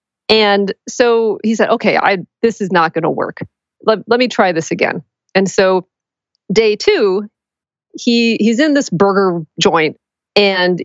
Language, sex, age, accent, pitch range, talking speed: English, female, 40-59, American, 195-265 Hz, 160 wpm